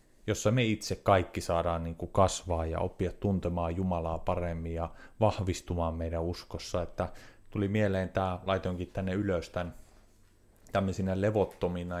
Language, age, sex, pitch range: Finnish, 30-49, male, 90-105 Hz